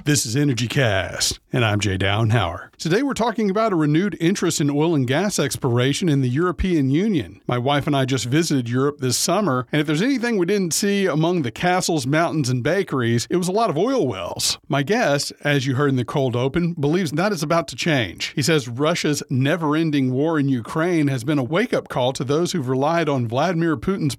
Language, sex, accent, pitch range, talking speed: English, male, American, 140-185 Hz, 215 wpm